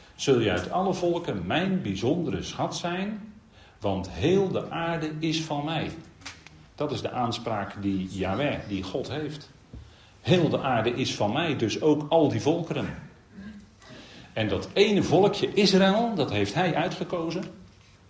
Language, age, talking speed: Dutch, 40-59, 150 wpm